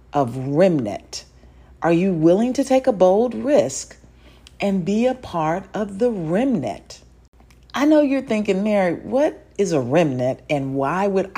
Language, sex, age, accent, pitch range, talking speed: English, female, 50-69, American, 135-190 Hz, 155 wpm